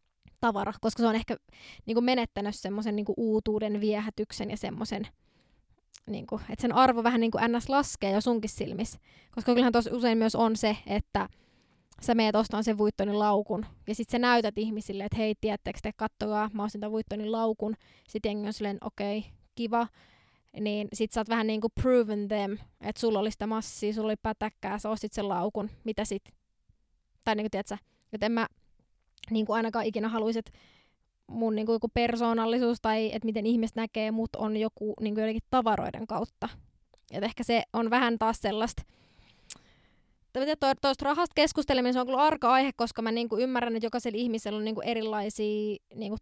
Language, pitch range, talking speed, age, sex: Finnish, 215-235 Hz, 175 wpm, 20-39, female